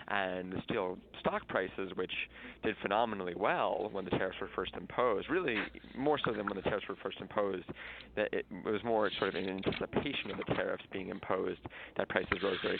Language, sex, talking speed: English, male, 195 wpm